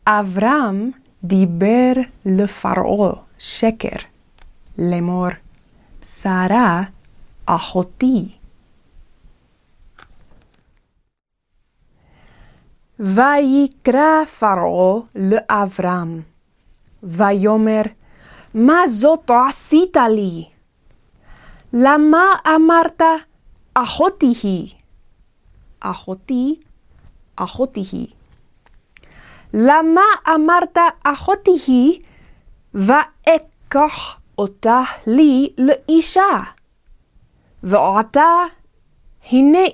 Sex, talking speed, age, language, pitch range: female, 55 wpm, 20-39, Hebrew, 185-295 Hz